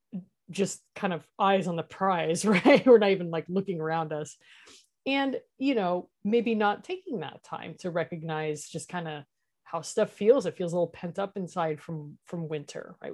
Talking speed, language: 190 wpm, English